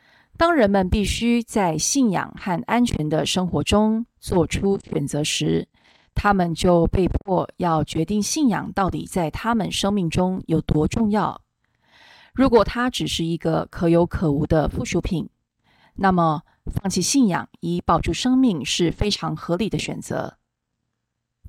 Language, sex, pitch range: Chinese, female, 160-210 Hz